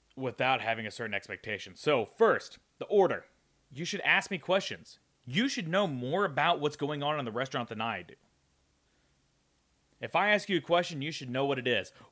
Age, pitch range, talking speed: 30-49, 120-175 Hz, 200 wpm